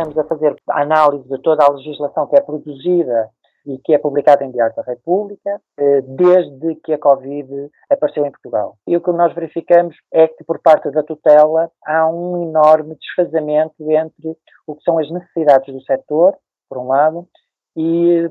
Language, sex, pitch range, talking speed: Portuguese, male, 150-175 Hz, 175 wpm